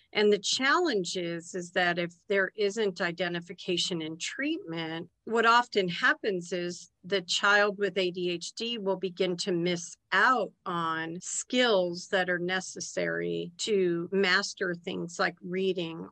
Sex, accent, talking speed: female, American, 130 wpm